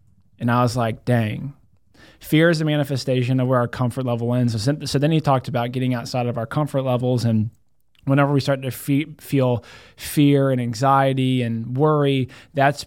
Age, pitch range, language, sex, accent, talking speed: 20-39, 125-140 Hz, English, male, American, 180 wpm